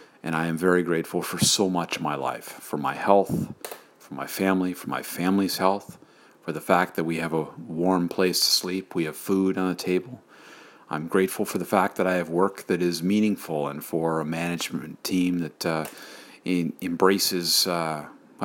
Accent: American